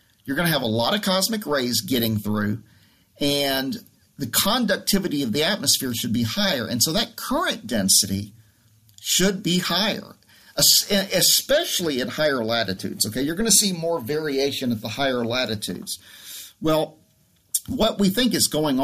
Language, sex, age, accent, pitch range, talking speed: English, male, 50-69, American, 120-195 Hz, 155 wpm